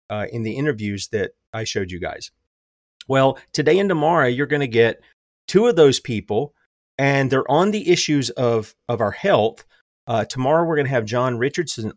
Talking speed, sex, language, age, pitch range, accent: 190 wpm, male, English, 30-49, 115-155 Hz, American